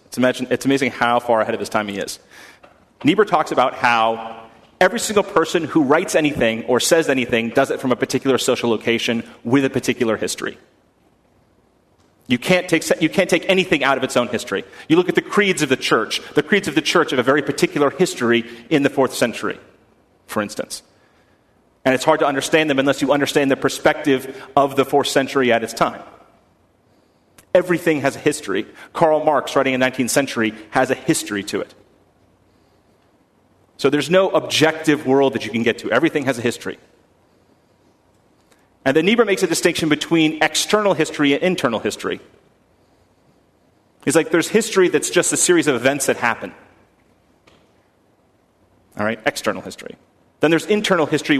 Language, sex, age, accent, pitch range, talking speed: English, male, 30-49, American, 125-160 Hz, 175 wpm